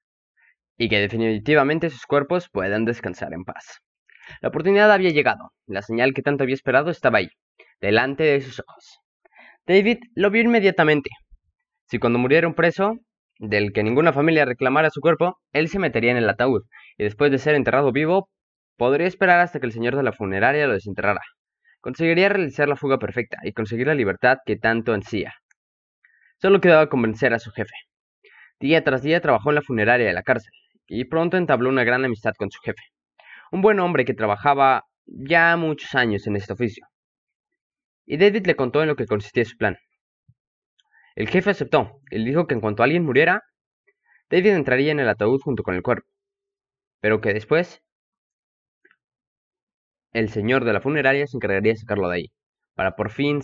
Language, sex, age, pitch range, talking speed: Spanish, male, 20-39, 110-170 Hz, 180 wpm